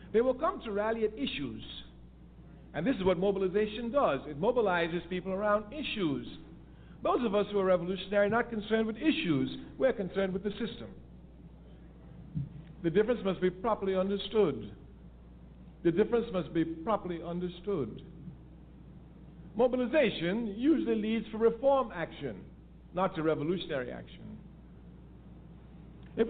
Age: 50-69